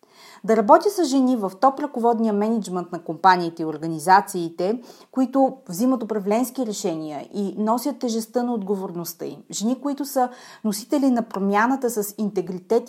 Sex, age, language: female, 30-49, Bulgarian